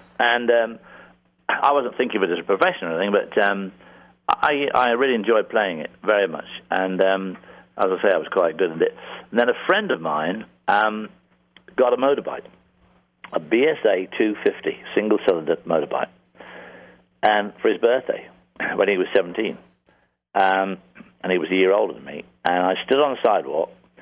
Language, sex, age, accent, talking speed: English, male, 50-69, British, 175 wpm